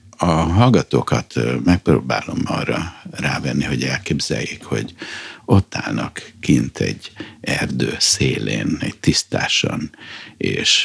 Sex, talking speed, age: male, 95 wpm, 60-79